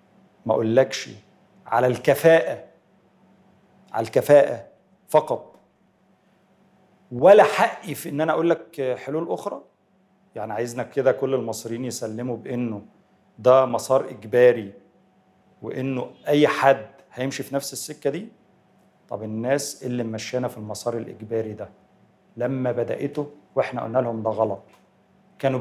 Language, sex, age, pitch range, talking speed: Arabic, male, 40-59, 115-155 Hz, 115 wpm